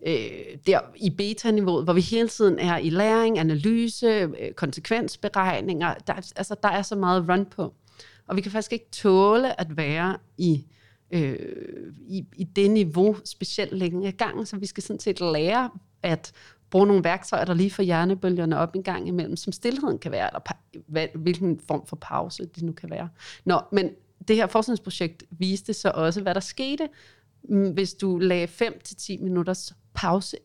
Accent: native